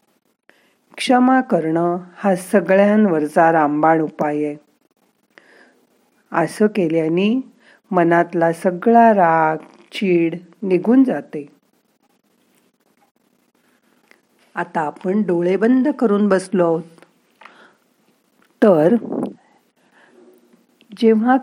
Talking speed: 60 wpm